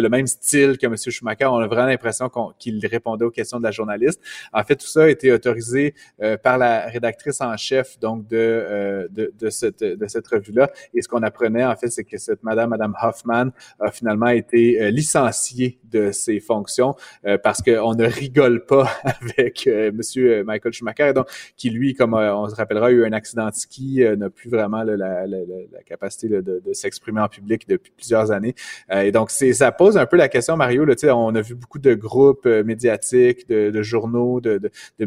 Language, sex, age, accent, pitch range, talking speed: French, male, 30-49, Canadian, 110-130 Hz, 225 wpm